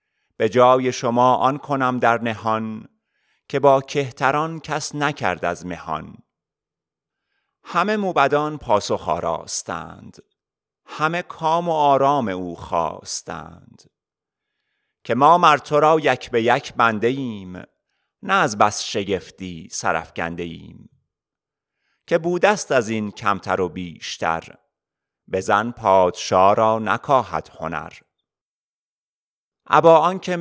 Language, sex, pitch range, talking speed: Persian, male, 105-145 Hz, 100 wpm